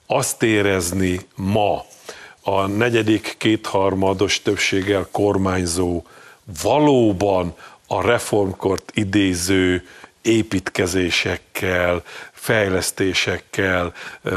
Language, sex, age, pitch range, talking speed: Hungarian, male, 50-69, 95-115 Hz, 60 wpm